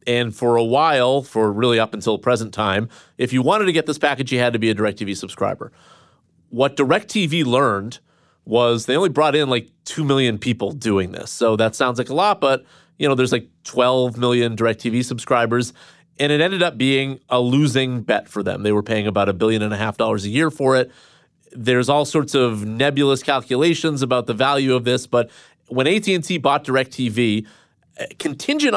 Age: 30-49